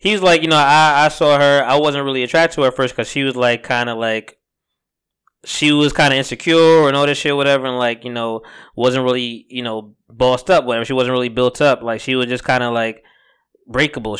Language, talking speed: English, 250 wpm